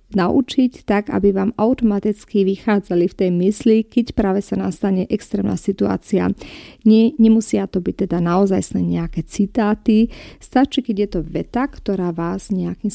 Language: Slovak